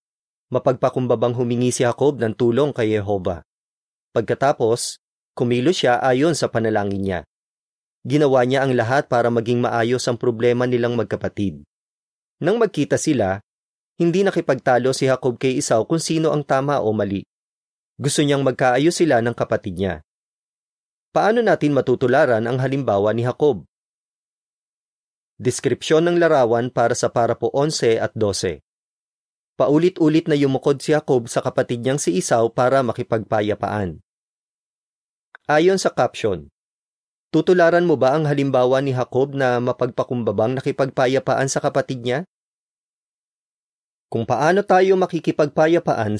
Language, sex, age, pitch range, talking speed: Filipino, male, 30-49, 115-150 Hz, 125 wpm